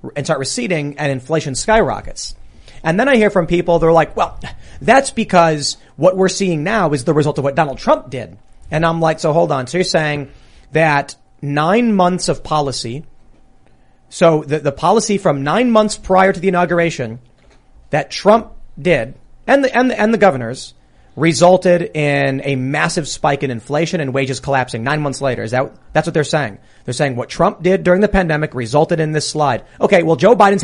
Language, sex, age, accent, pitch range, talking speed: English, male, 30-49, American, 140-190 Hz, 195 wpm